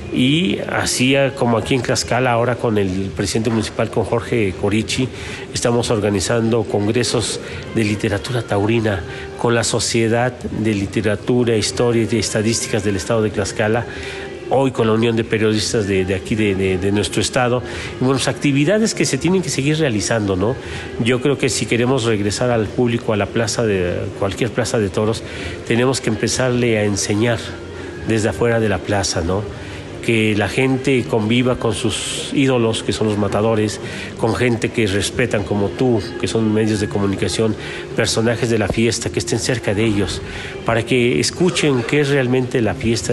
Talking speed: 170 wpm